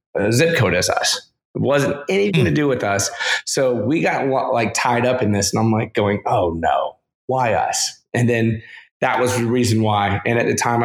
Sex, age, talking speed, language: male, 20-39, 210 wpm, English